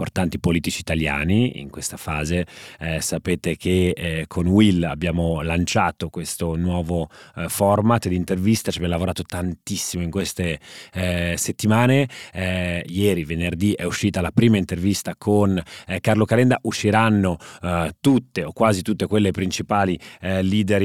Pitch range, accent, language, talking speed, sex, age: 85-105 Hz, native, Italian, 140 wpm, male, 30-49